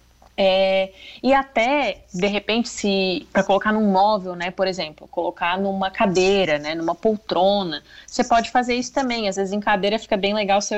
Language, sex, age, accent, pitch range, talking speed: Portuguese, female, 20-39, Brazilian, 190-235 Hz, 180 wpm